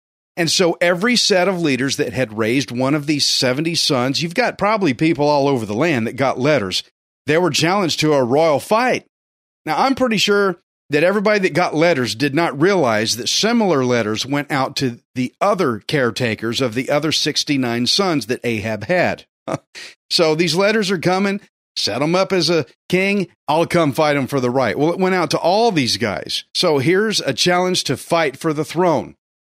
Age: 40-59